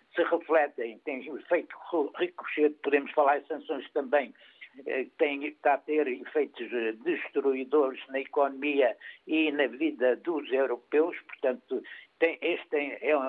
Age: 60-79